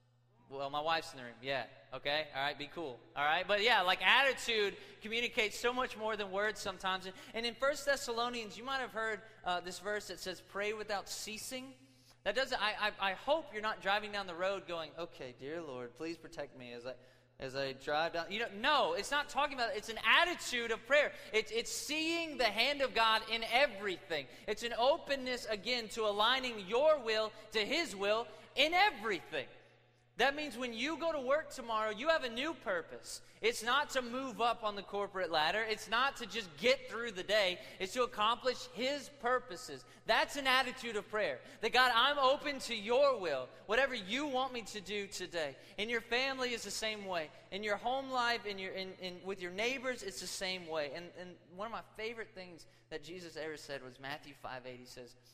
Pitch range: 160-250 Hz